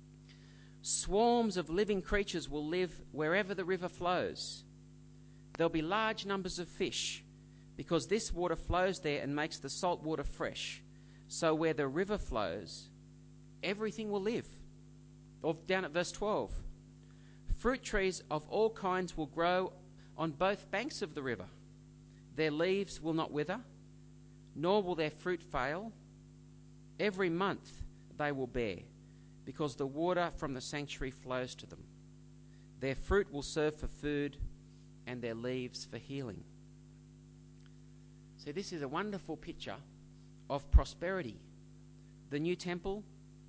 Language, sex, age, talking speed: English, male, 40-59, 135 wpm